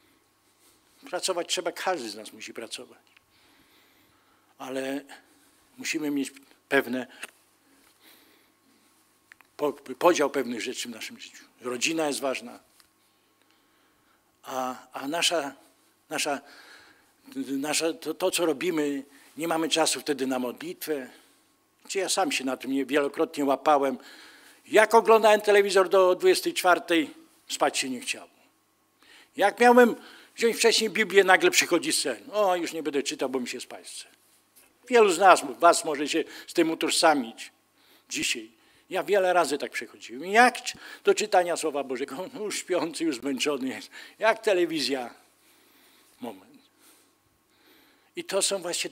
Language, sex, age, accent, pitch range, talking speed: Polish, male, 50-69, native, 150-245 Hz, 125 wpm